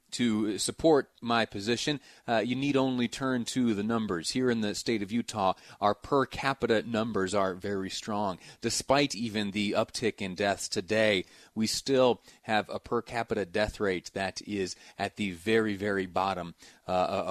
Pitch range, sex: 105-130 Hz, male